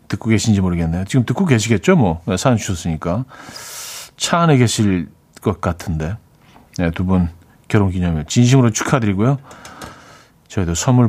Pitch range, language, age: 95-140 Hz, Korean, 40-59